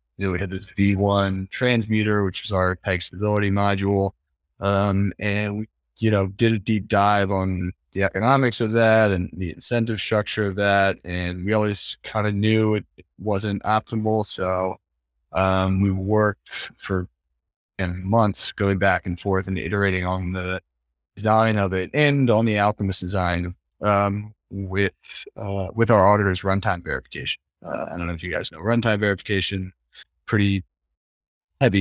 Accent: American